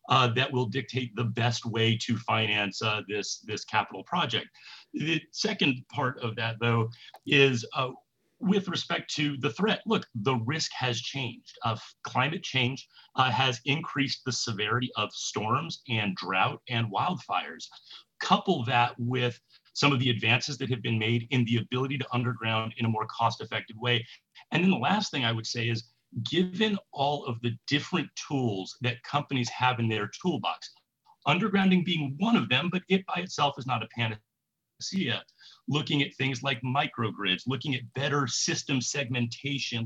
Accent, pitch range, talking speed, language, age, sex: American, 115-145 Hz, 165 wpm, English, 40-59, male